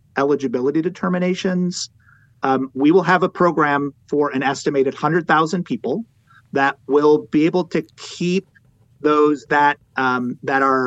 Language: English